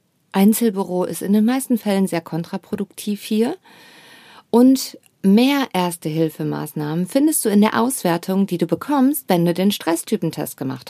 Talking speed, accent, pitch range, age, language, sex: 145 wpm, German, 160-225 Hz, 50-69, German, female